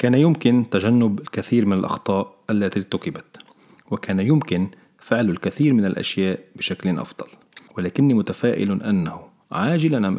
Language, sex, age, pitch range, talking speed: Arabic, male, 40-59, 90-140 Hz, 125 wpm